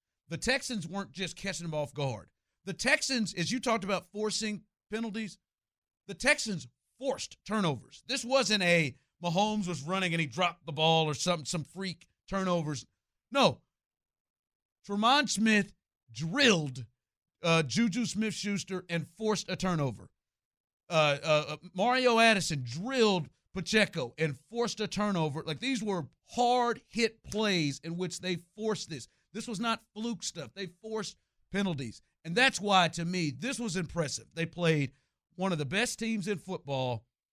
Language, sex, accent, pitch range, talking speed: English, male, American, 160-215 Hz, 150 wpm